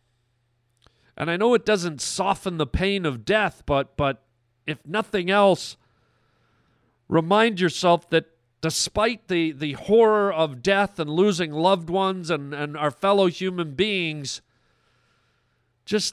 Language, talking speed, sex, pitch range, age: English, 130 wpm, male, 145-195 Hz, 40-59